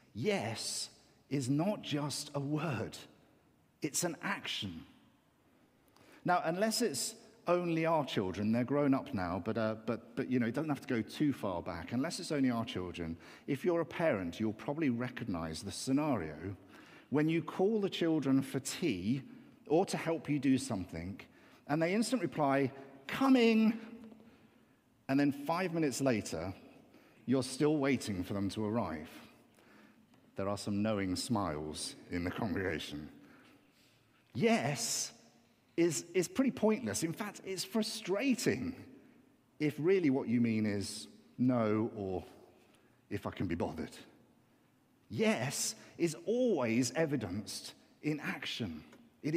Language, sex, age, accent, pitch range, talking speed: English, male, 50-69, British, 110-170 Hz, 140 wpm